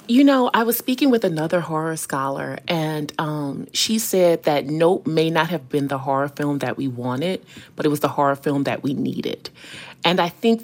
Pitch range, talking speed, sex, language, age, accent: 155-185 Hz, 210 wpm, female, English, 30-49, American